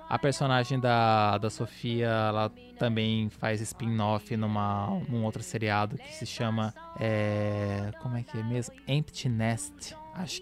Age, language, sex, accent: 20-39, Portuguese, male, Brazilian